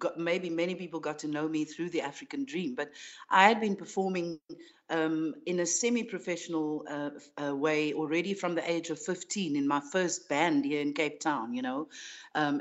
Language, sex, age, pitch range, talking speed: English, female, 60-79, 150-190 Hz, 195 wpm